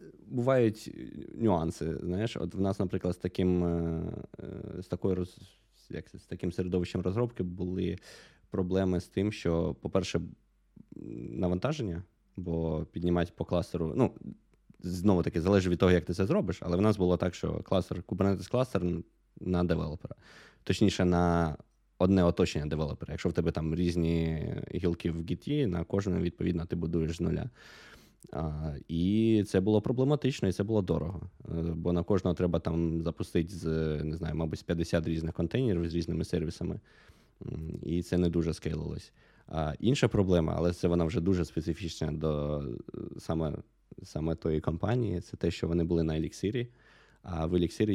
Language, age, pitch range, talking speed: Ukrainian, 20-39, 80-95 Hz, 150 wpm